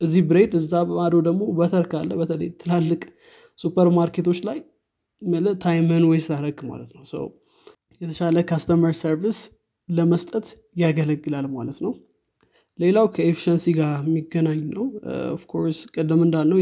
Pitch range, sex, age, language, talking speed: 155-175 Hz, male, 20-39, Amharic, 110 wpm